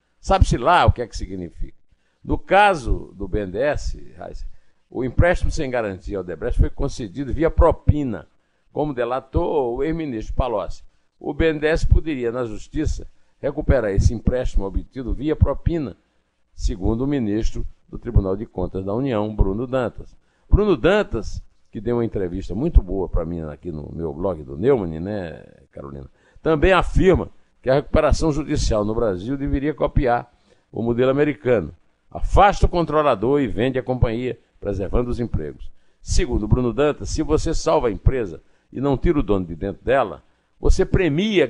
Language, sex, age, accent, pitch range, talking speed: Portuguese, male, 60-79, Brazilian, 95-135 Hz, 155 wpm